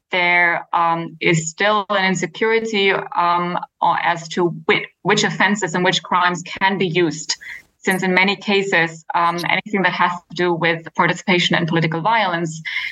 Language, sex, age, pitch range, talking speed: English, female, 20-39, 165-195 Hz, 150 wpm